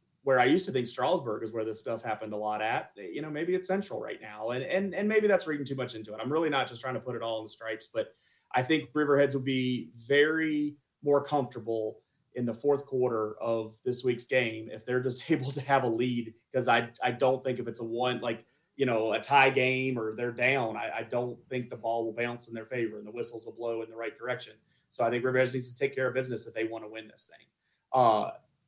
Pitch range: 115-145 Hz